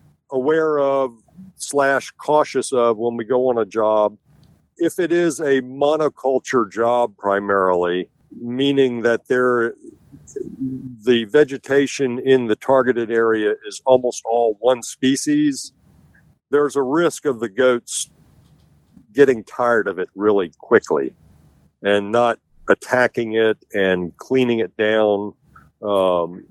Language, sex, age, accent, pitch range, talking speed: English, male, 50-69, American, 105-135 Hz, 120 wpm